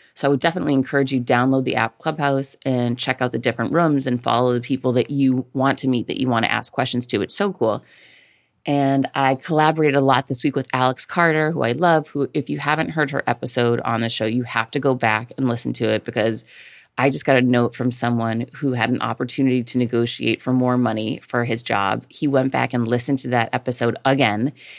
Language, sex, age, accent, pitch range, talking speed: English, female, 30-49, American, 120-140 Hz, 235 wpm